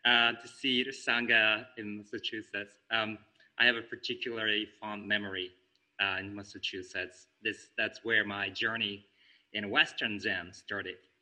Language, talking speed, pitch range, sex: English, 140 wpm, 95-115 Hz, male